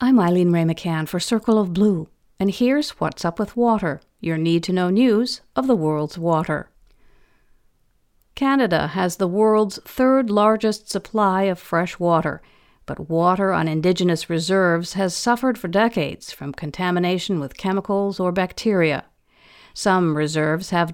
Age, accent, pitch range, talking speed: 50-69, American, 165-215 Hz, 140 wpm